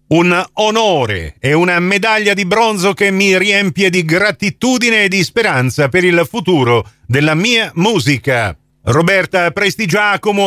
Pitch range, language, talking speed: 125-185 Hz, Italian, 130 wpm